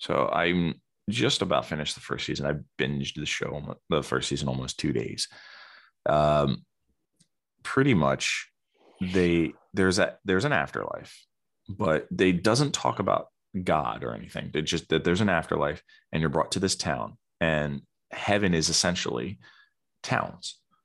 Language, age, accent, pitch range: English, 30-49, American, 70-85 Hz